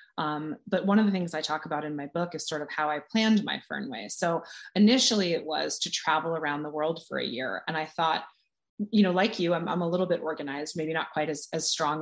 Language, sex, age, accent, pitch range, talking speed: English, female, 30-49, American, 160-210 Hz, 255 wpm